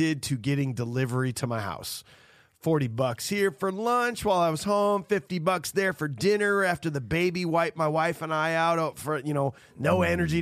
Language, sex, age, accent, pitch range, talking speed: English, male, 30-49, American, 135-185 Hz, 195 wpm